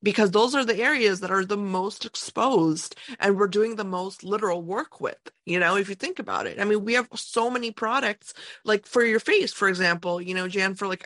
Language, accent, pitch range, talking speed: English, American, 175-210 Hz, 235 wpm